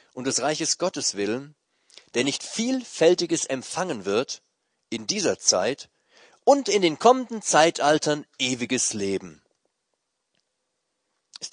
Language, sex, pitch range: German, male, 110-155 Hz